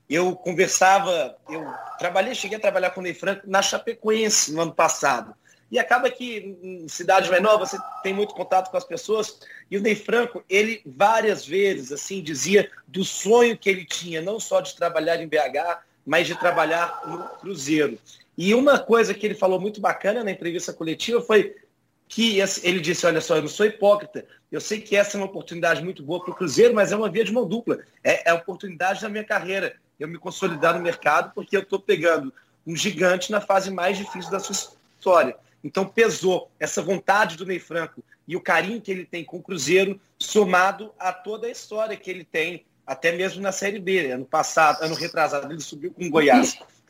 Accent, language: Brazilian, Portuguese